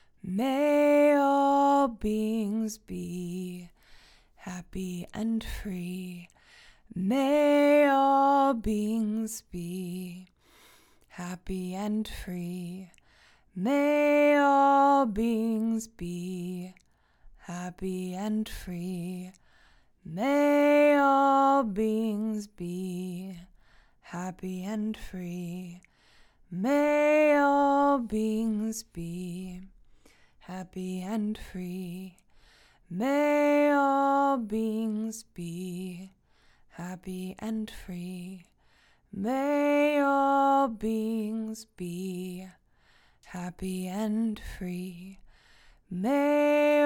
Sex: female